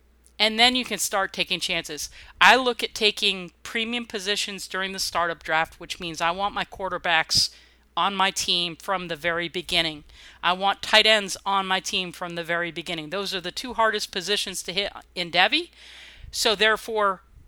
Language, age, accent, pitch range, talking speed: English, 40-59, American, 170-200 Hz, 180 wpm